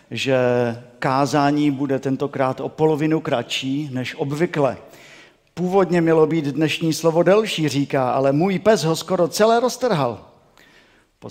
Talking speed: 125 wpm